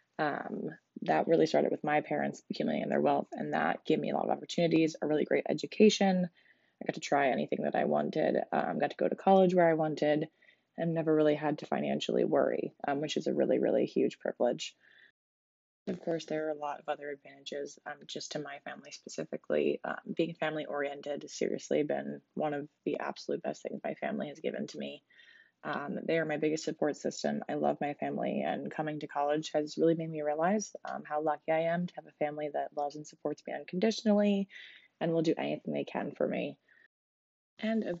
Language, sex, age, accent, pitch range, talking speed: English, female, 20-39, American, 145-170 Hz, 210 wpm